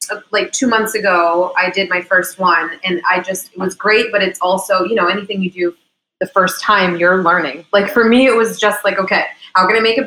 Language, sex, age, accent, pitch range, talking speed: English, female, 20-39, American, 185-215 Hz, 245 wpm